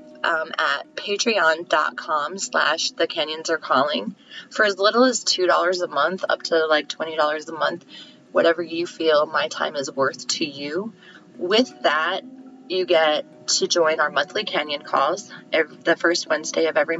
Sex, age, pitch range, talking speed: female, 20-39, 160-210 Hz, 150 wpm